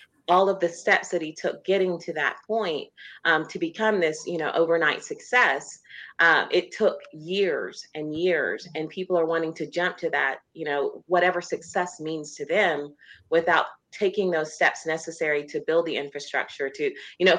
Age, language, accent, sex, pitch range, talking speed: 30-49, English, American, female, 150-185 Hz, 180 wpm